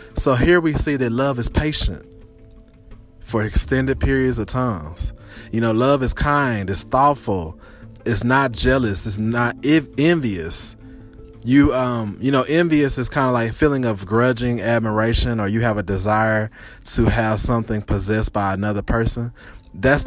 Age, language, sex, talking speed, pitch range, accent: 20-39, English, male, 155 wpm, 105-130 Hz, American